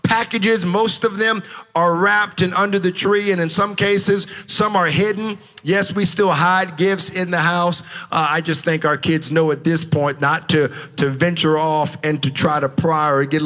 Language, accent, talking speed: English, American, 210 wpm